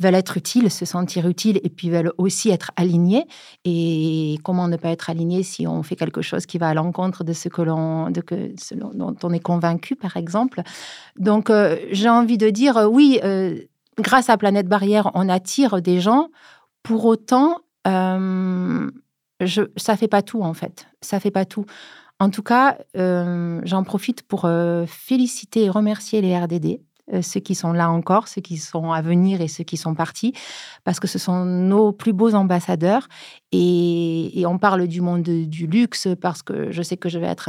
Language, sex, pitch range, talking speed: French, female, 170-205 Hz, 195 wpm